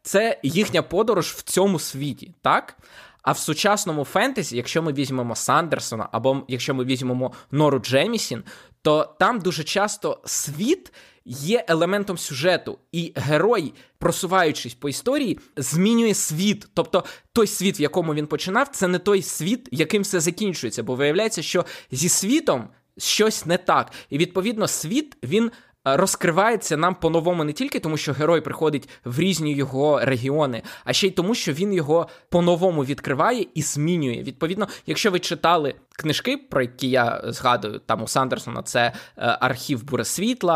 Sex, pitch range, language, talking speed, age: male, 135-190 Hz, Ukrainian, 150 wpm, 20-39